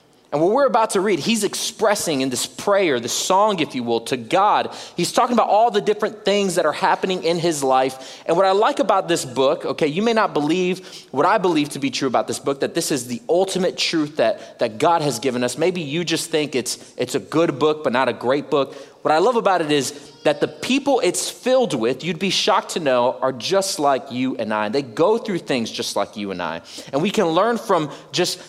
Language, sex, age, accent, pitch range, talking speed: English, male, 30-49, American, 150-220 Hz, 245 wpm